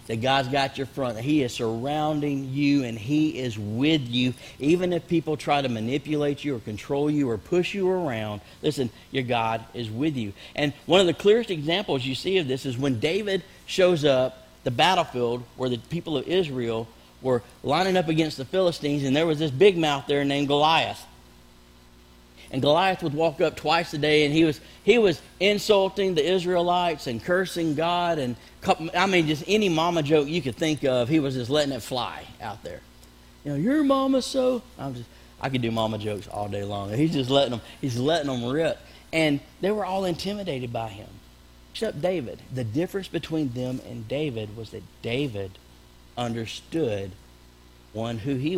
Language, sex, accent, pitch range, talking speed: English, male, American, 115-165 Hz, 195 wpm